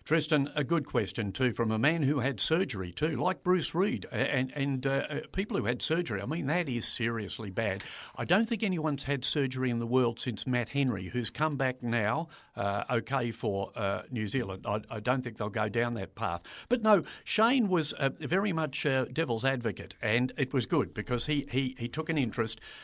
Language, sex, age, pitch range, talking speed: English, male, 50-69, 115-150 Hz, 210 wpm